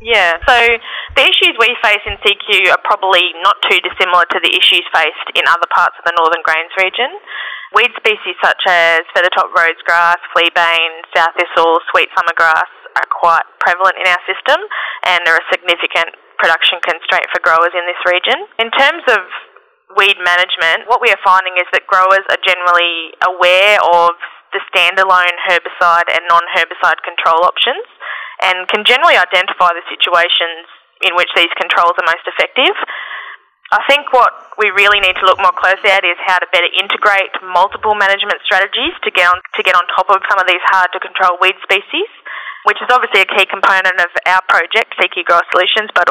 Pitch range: 175-215 Hz